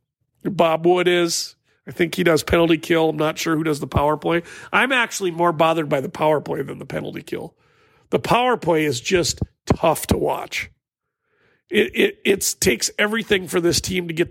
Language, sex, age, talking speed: English, male, 50-69, 190 wpm